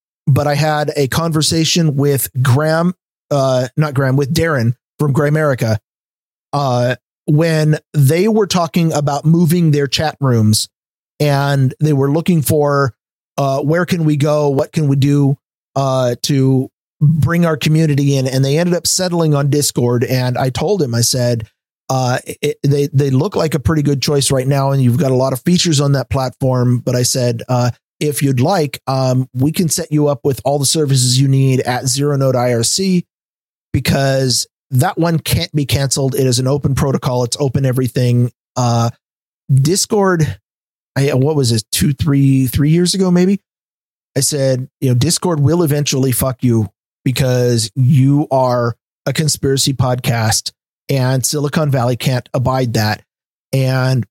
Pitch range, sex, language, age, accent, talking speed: 130-150 Hz, male, English, 40-59, American, 165 wpm